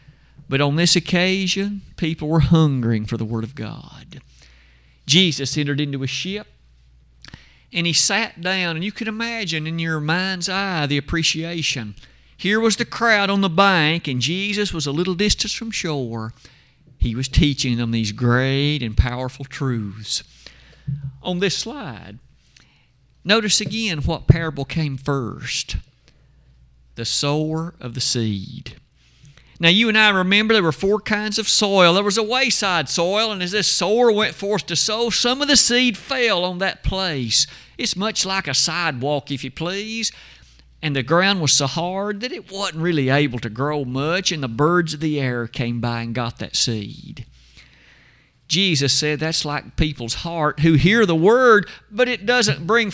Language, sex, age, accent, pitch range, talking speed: English, male, 50-69, American, 130-200 Hz, 170 wpm